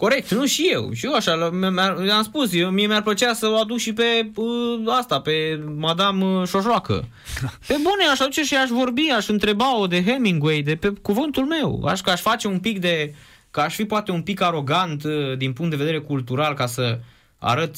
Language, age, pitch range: Romanian, 20-39, 150-235 Hz